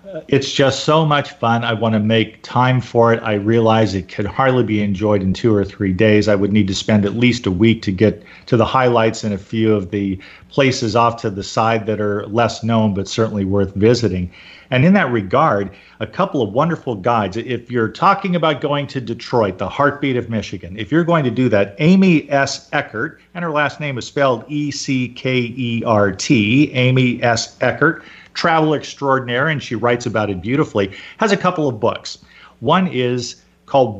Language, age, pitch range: English, 40-59, 110-145 Hz